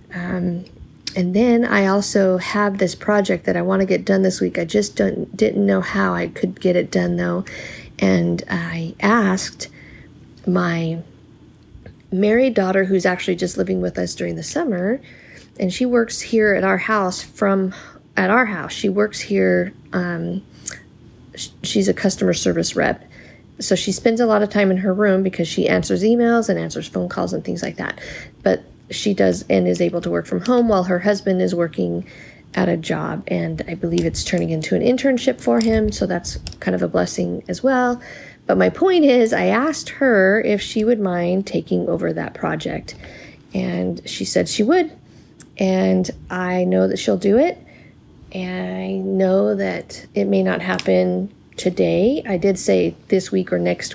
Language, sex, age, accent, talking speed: English, female, 40-59, American, 180 wpm